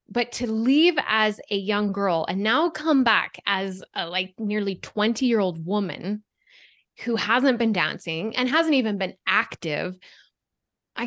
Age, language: 10-29, English